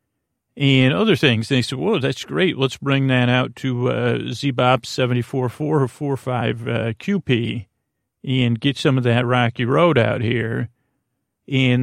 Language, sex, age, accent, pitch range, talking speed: English, male, 40-59, American, 120-135 Hz, 145 wpm